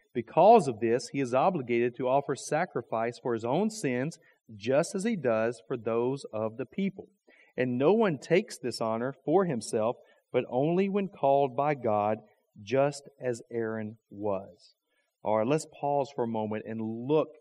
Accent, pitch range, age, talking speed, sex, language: American, 120-150 Hz, 40-59, 170 wpm, male, English